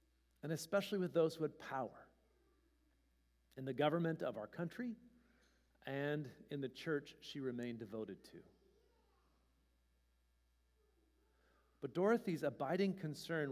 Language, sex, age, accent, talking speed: English, male, 40-59, American, 110 wpm